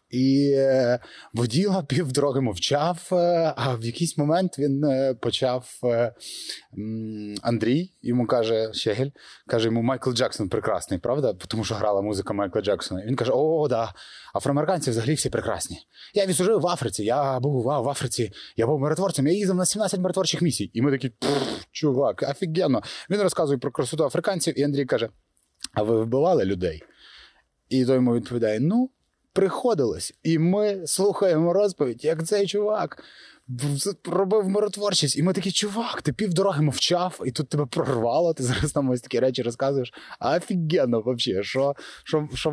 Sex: male